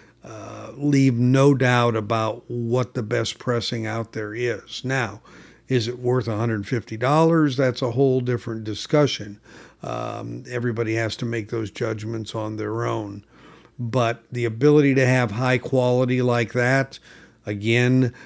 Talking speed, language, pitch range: 140 wpm, English, 115-130 Hz